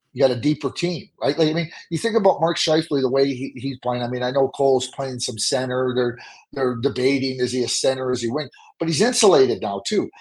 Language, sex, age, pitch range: English, male, 40-59, 135-170 Hz